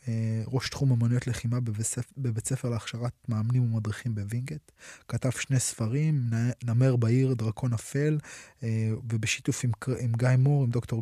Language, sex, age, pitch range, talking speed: Hebrew, male, 20-39, 115-135 Hz, 135 wpm